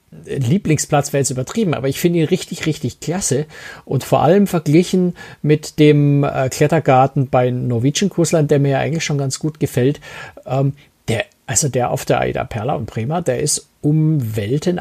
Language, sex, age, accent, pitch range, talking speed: German, male, 50-69, German, 130-170 Hz, 170 wpm